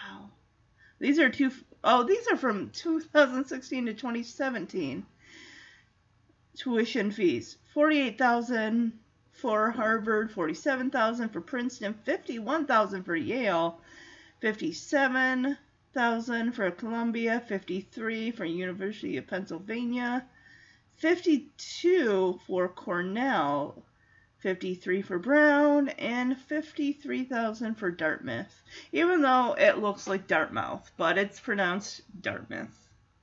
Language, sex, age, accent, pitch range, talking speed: English, female, 30-49, American, 200-290 Hz, 90 wpm